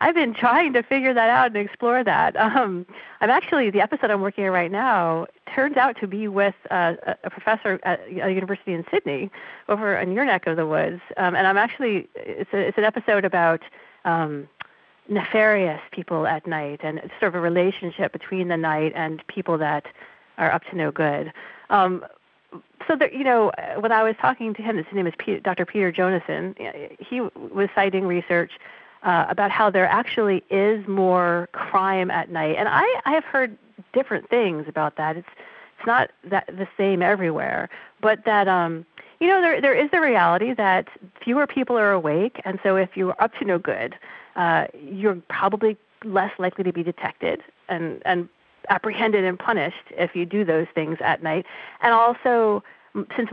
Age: 40-59